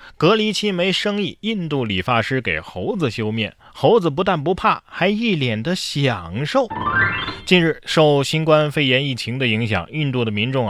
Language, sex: Chinese, male